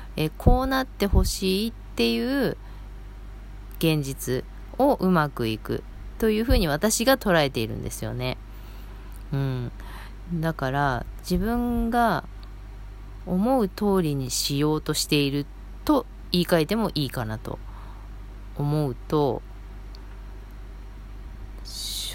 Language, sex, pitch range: Japanese, female, 100-170 Hz